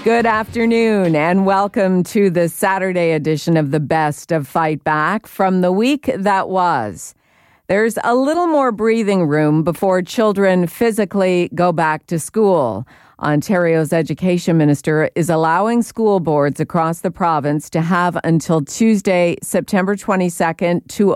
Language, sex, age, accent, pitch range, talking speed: English, female, 50-69, American, 160-195 Hz, 140 wpm